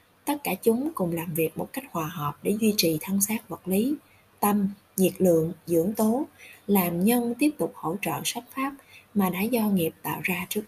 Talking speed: 210 wpm